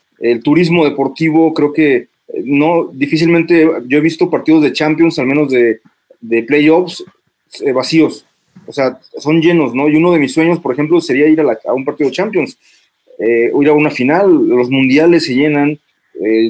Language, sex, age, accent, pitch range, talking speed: Spanish, male, 30-49, Mexican, 130-165 Hz, 195 wpm